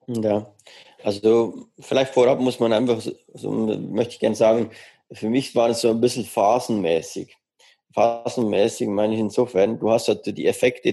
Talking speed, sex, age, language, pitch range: 160 wpm, male, 20-39, German, 105-125 Hz